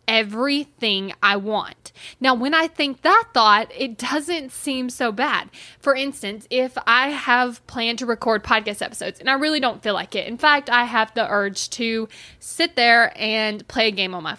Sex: female